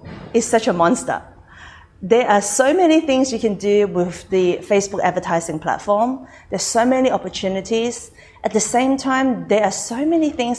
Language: English